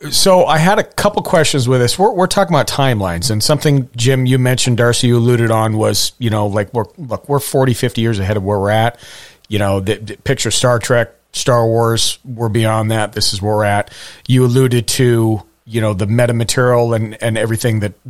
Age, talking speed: 40-59, 220 wpm